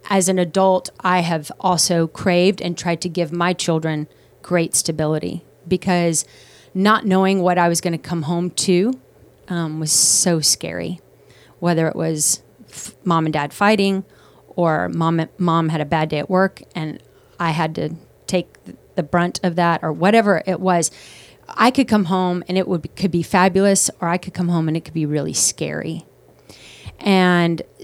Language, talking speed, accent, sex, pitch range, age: English, 180 wpm, American, female, 160-185 Hz, 30-49